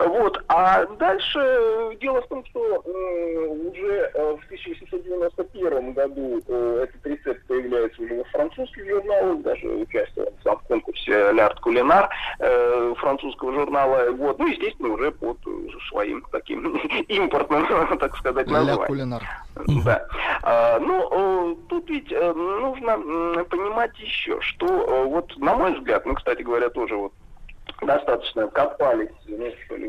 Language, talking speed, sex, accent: Russian, 130 wpm, male, native